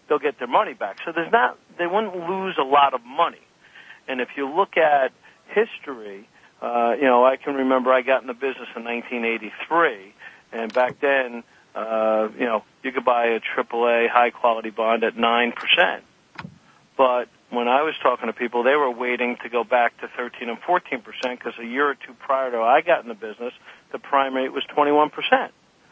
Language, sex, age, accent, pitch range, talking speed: English, male, 50-69, American, 120-160 Hz, 205 wpm